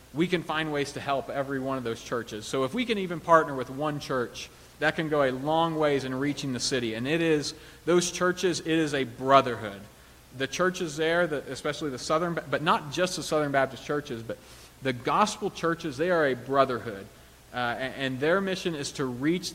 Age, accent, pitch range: 40-59, American, 135-170 Hz